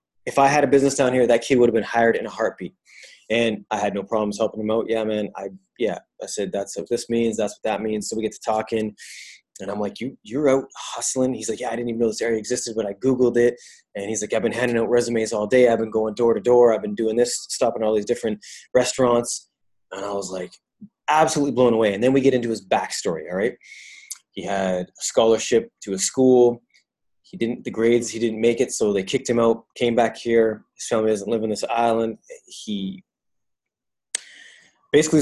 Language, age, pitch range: English, 20-39, 110-130 Hz